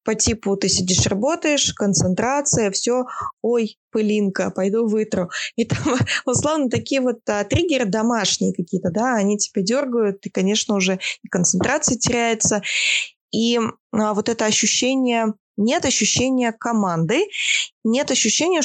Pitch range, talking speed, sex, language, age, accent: 185-235 Hz, 120 wpm, female, Russian, 20-39, native